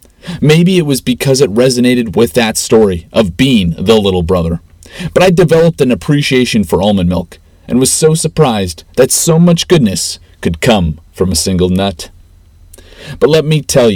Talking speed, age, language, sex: 170 wpm, 40-59, English, male